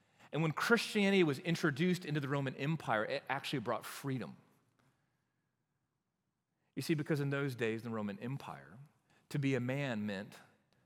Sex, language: male, English